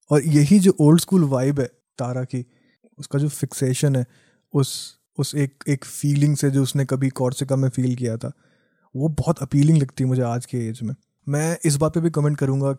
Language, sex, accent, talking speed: English, male, Indian, 200 wpm